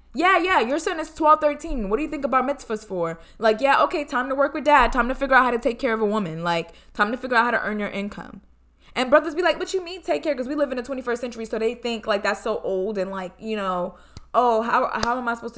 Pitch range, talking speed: 195-260 Hz, 295 wpm